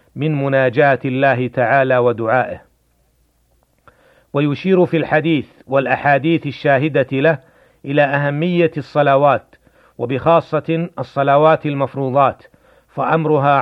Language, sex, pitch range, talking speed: Arabic, male, 130-155 Hz, 80 wpm